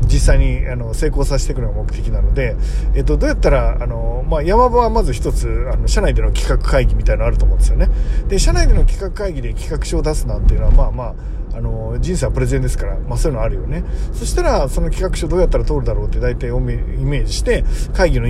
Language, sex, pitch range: Japanese, male, 115-155 Hz